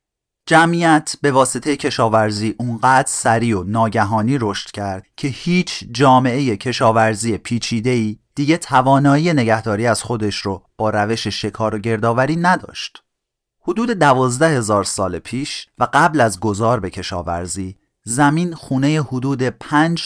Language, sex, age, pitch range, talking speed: Persian, male, 30-49, 105-140 Hz, 125 wpm